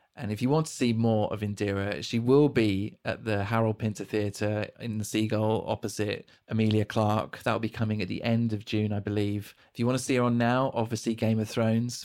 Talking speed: 230 wpm